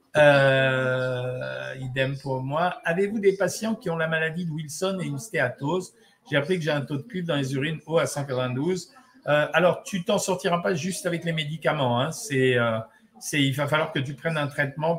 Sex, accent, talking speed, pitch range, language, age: male, French, 210 wpm, 140-185 Hz, French, 50-69